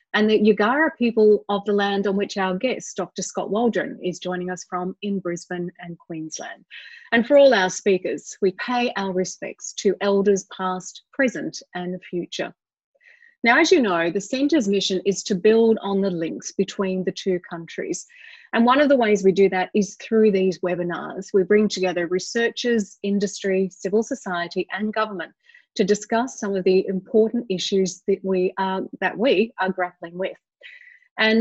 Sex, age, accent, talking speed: female, 30-49, Australian, 170 wpm